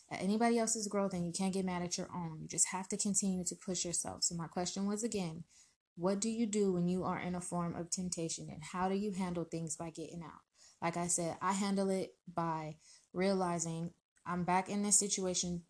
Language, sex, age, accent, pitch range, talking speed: English, female, 20-39, American, 170-190 Hz, 220 wpm